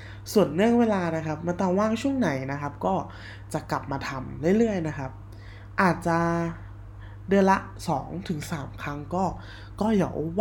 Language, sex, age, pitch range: Thai, male, 20-39, 135-190 Hz